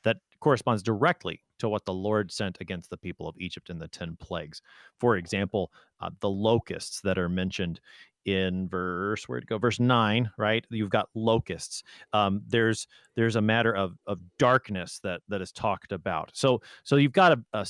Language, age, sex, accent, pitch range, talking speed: English, 30-49, male, American, 95-130 Hz, 185 wpm